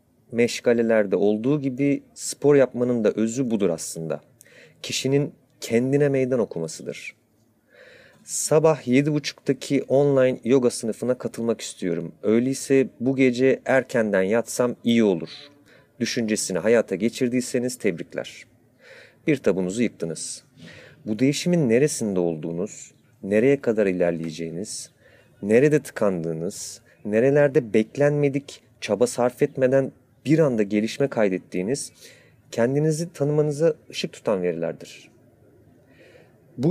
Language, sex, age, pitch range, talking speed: Turkish, male, 40-59, 110-140 Hz, 95 wpm